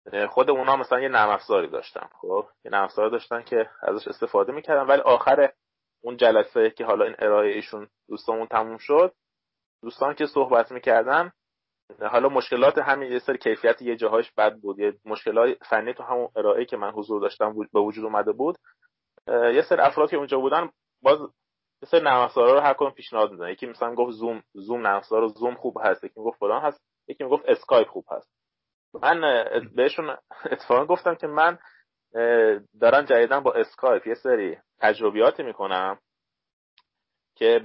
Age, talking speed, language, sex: 30-49, 160 wpm, Persian, male